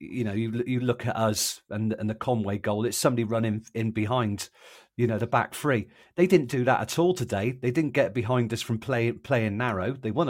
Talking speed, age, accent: 235 wpm, 40-59, British